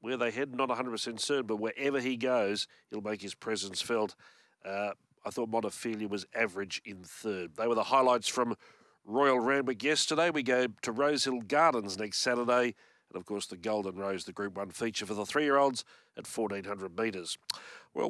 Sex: male